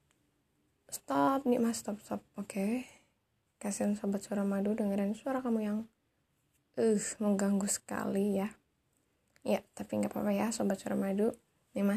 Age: 10-29